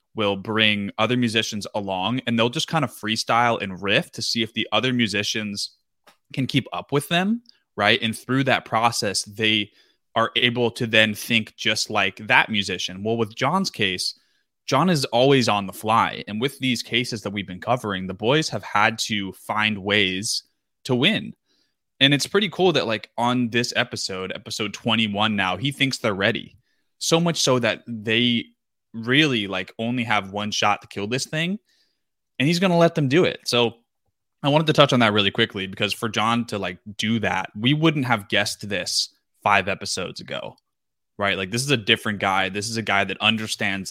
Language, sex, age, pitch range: English, male, 20-39, 105-125 Hz